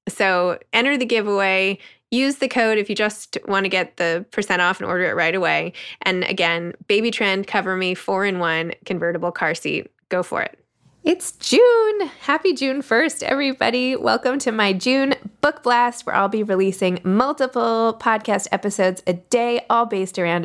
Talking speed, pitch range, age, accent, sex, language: 175 wpm, 175-240 Hz, 20-39, American, female, English